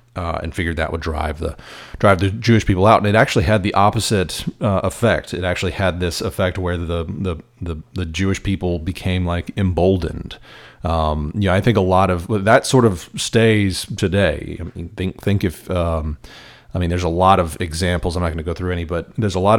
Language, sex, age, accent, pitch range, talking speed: English, male, 30-49, American, 85-105 Hz, 220 wpm